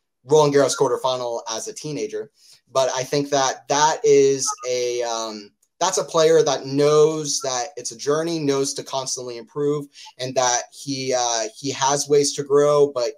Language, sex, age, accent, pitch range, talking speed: English, male, 20-39, American, 130-155 Hz, 170 wpm